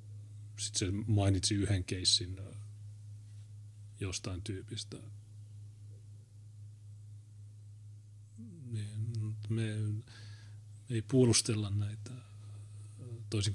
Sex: male